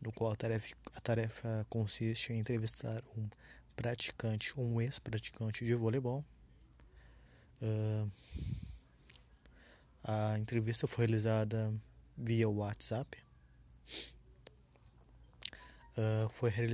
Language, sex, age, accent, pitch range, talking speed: Portuguese, male, 20-39, Brazilian, 105-120 Hz, 90 wpm